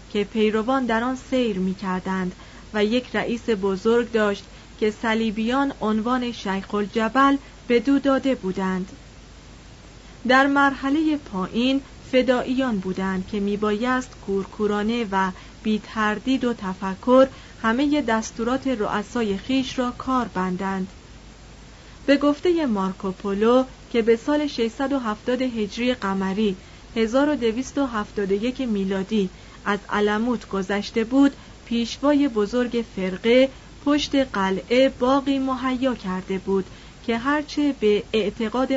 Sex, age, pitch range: female, 40-59, 200-260 Hz